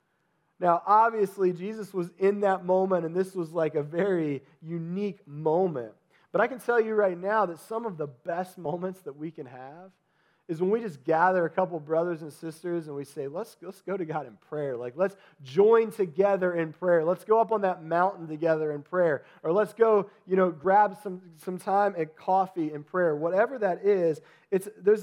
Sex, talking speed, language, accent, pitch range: male, 205 wpm, English, American, 155-190 Hz